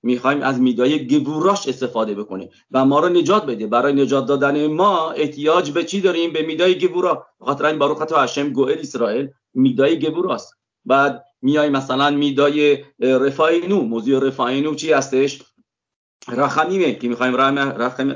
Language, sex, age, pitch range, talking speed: English, male, 40-59, 130-165 Hz, 145 wpm